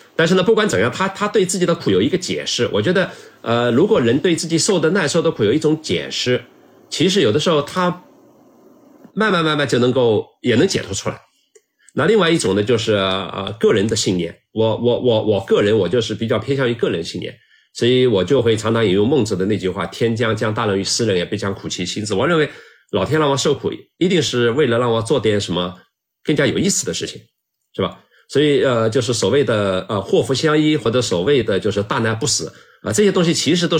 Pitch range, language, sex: 110-155 Hz, Chinese, male